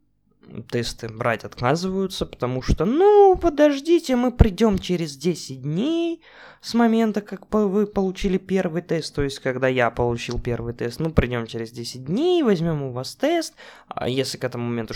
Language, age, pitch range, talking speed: Russian, 20-39, 115-160 Hz, 155 wpm